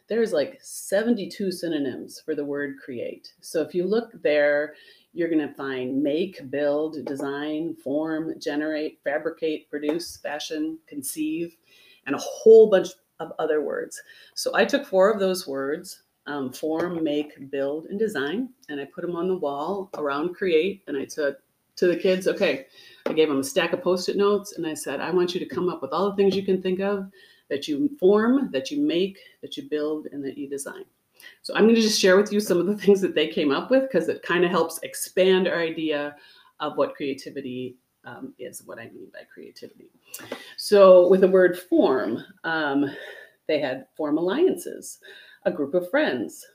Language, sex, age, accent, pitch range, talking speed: English, female, 30-49, American, 155-215 Hz, 190 wpm